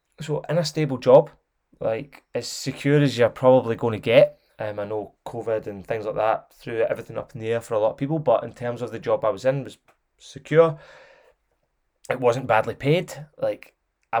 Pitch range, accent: 115-145 Hz, British